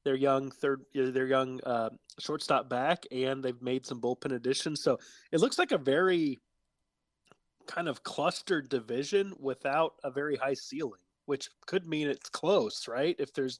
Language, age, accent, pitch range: English, 20-39, American, 125-150 Hz